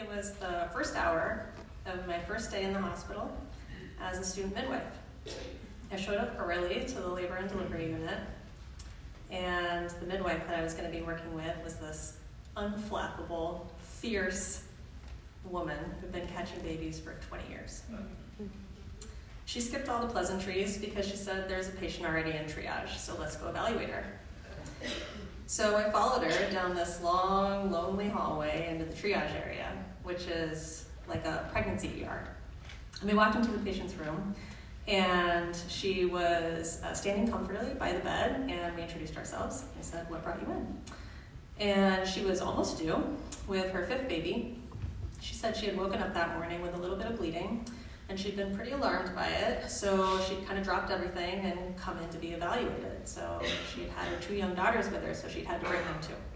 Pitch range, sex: 165-195 Hz, female